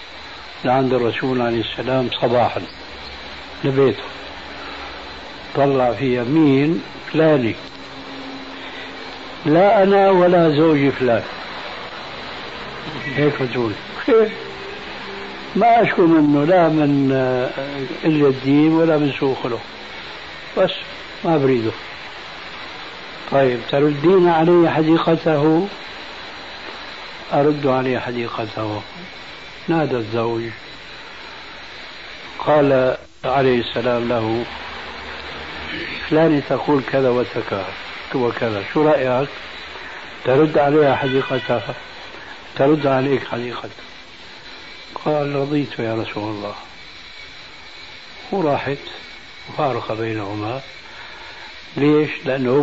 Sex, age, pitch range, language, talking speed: male, 60-79, 120-150 Hz, Arabic, 75 wpm